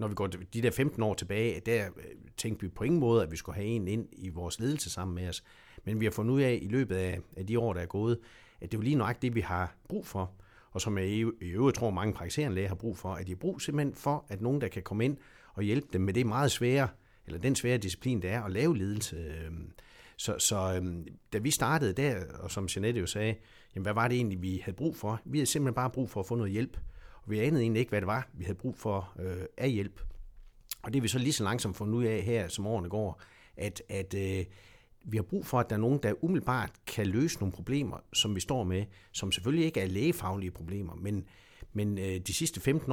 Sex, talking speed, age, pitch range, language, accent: male, 255 wpm, 60-79, 95-125 Hz, Danish, native